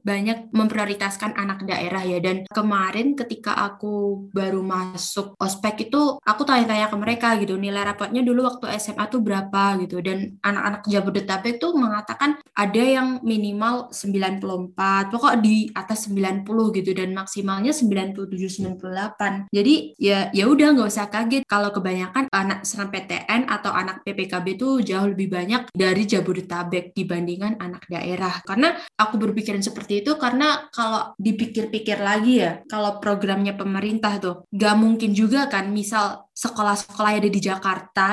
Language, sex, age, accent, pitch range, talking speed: Indonesian, female, 10-29, native, 195-225 Hz, 145 wpm